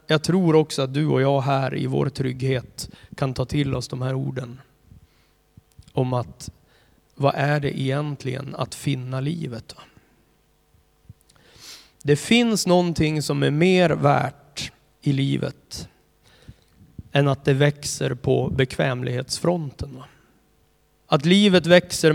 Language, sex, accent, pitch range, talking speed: Swedish, male, native, 130-150 Hz, 120 wpm